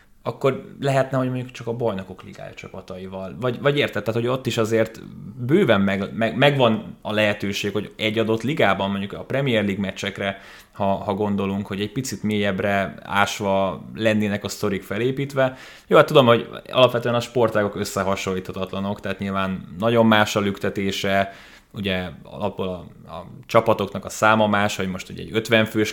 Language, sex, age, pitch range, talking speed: Hungarian, male, 20-39, 100-115 Hz, 165 wpm